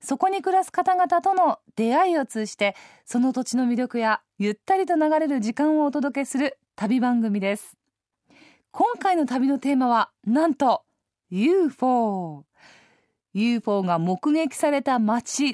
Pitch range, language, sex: 230-325 Hz, Japanese, female